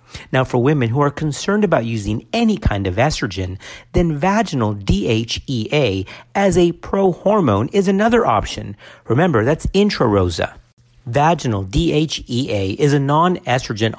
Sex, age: male, 50-69